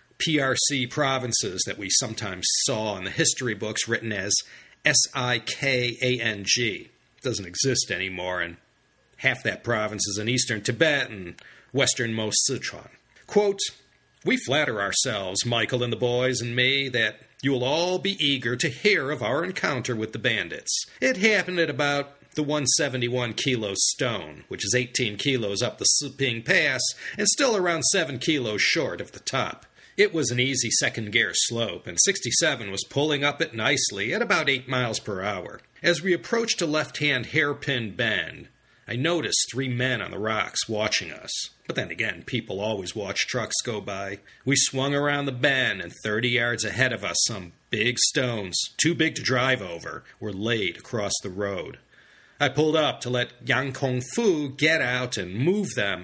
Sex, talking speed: male, 170 wpm